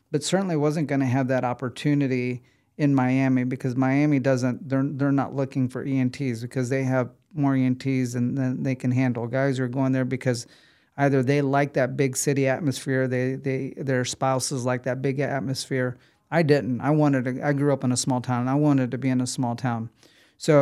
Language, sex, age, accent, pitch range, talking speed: English, male, 40-59, American, 130-140 Hz, 200 wpm